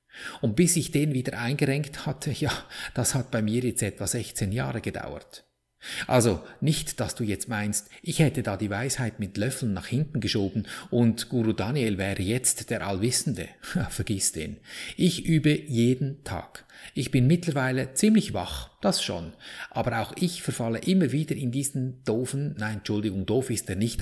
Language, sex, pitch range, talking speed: German, male, 105-140 Hz, 170 wpm